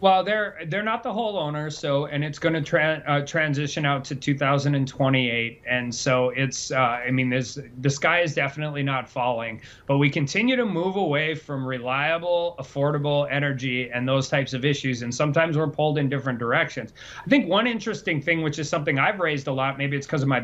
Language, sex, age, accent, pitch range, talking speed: English, male, 30-49, American, 135-170 Hz, 200 wpm